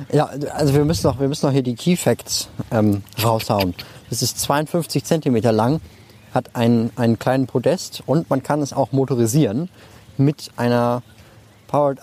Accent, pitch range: German, 110-140 Hz